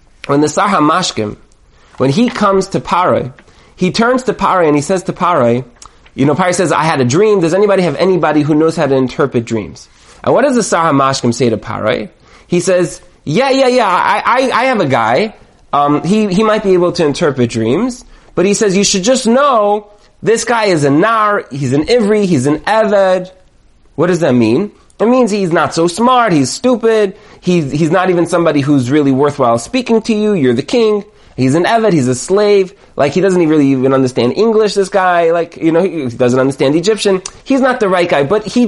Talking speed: 215 wpm